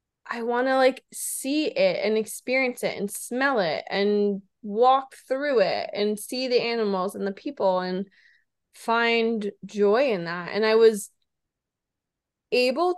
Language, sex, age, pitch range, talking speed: English, female, 20-39, 195-240 Hz, 150 wpm